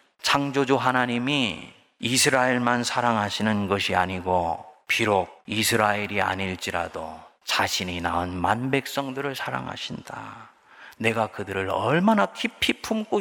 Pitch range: 95-135 Hz